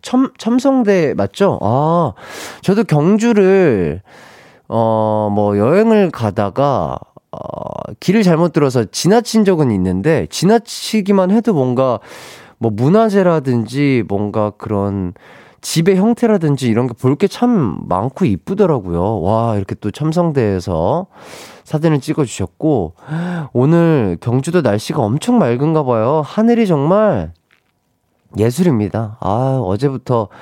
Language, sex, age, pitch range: Korean, male, 30-49, 105-175 Hz